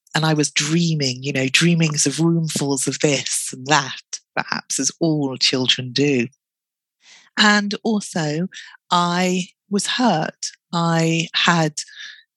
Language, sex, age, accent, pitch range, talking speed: English, female, 40-59, British, 150-190 Hz, 120 wpm